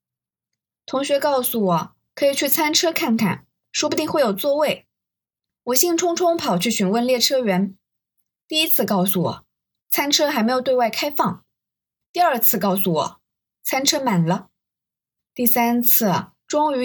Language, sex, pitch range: Chinese, female, 185-255 Hz